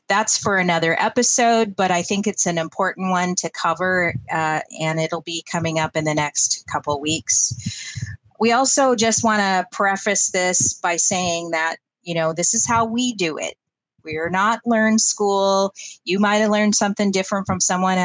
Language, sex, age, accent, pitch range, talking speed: English, female, 30-49, American, 165-200 Hz, 180 wpm